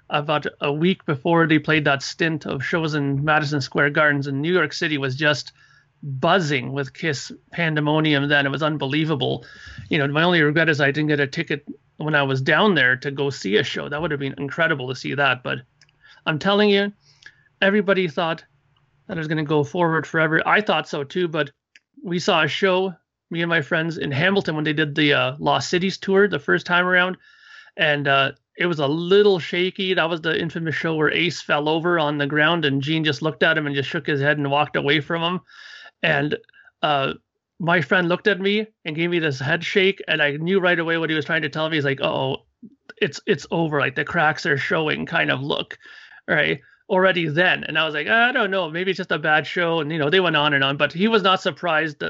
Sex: male